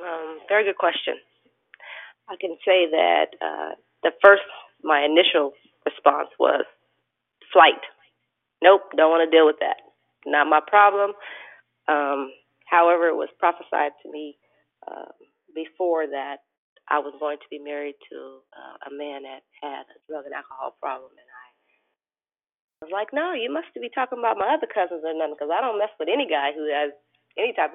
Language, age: English, 30-49